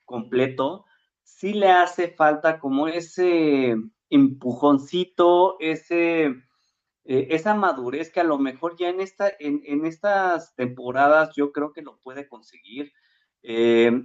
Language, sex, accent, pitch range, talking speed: Spanish, male, Mexican, 120-150 Hz, 130 wpm